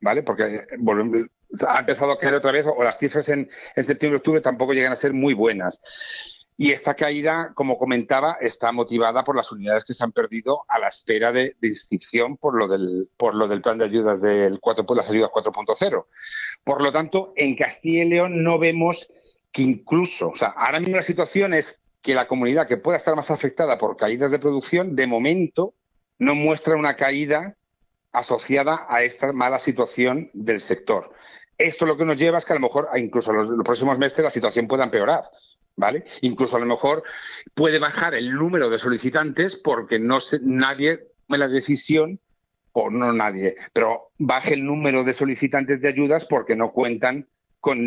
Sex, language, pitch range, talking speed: male, Spanish, 120-160 Hz, 185 wpm